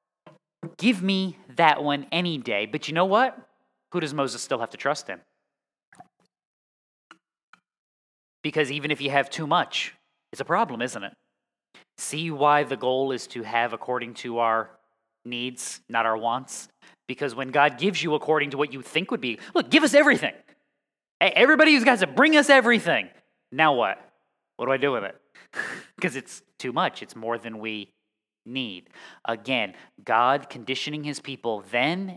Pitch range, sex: 120-170 Hz, male